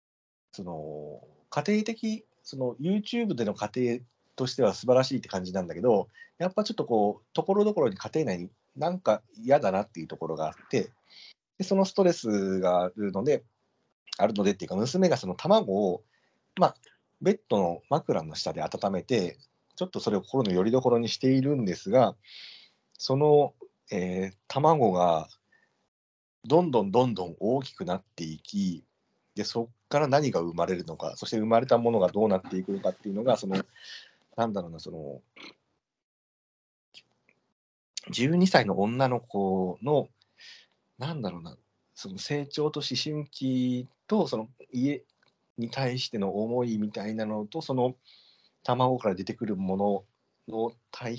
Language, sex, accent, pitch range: Japanese, male, native, 95-145 Hz